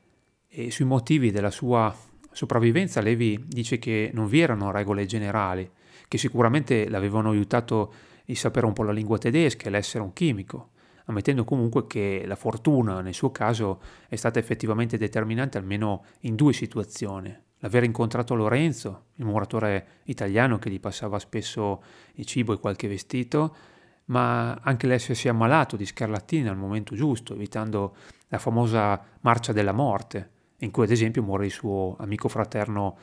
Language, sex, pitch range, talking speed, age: Italian, male, 105-130 Hz, 155 wpm, 30-49